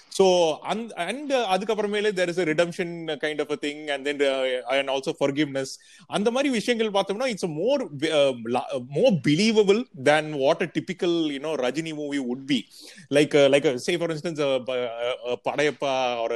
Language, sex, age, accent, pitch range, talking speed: Tamil, male, 30-49, native, 140-200 Hz, 190 wpm